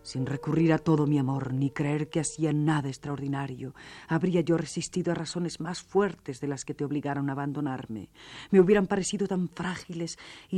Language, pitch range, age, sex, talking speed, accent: Spanish, 125-155 Hz, 40-59, female, 180 wpm, Spanish